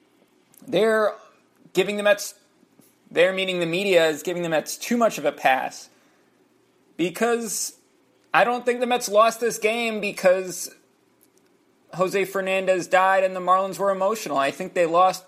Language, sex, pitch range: English, male, 160-200 Hz